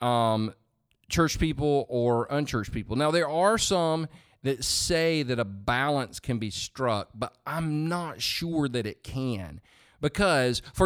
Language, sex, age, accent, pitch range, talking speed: English, male, 40-59, American, 110-145 Hz, 150 wpm